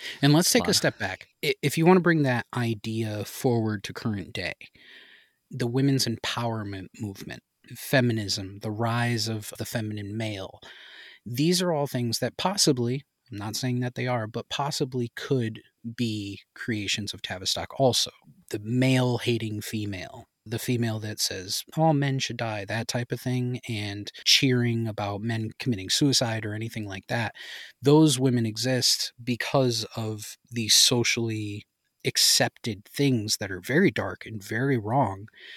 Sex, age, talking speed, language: male, 30-49, 150 wpm, English